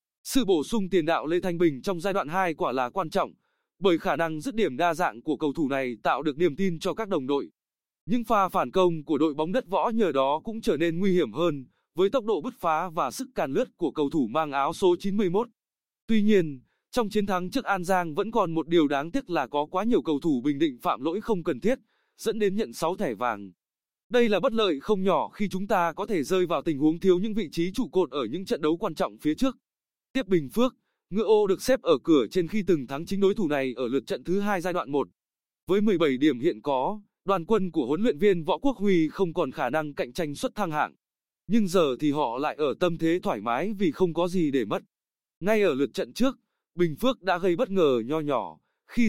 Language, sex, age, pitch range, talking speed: Vietnamese, male, 20-39, 165-220 Hz, 255 wpm